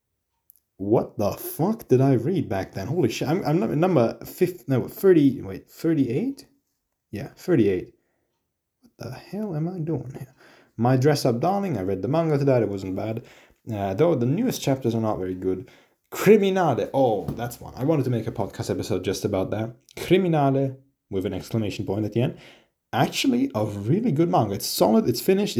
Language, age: English, 30-49